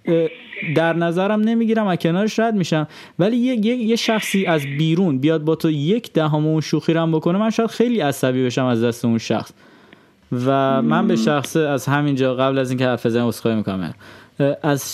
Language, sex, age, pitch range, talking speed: Persian, male, 20-39, 120-155 Hz, 175 wpm